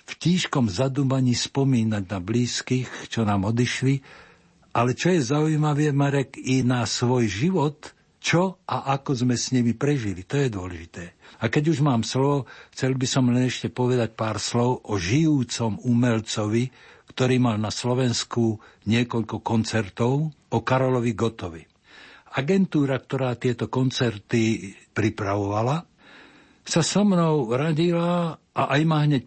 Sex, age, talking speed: male, 60-79, 135 wpm